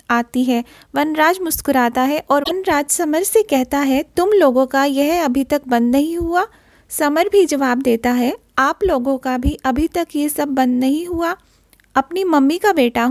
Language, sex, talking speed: Hindi, female, 185 wpm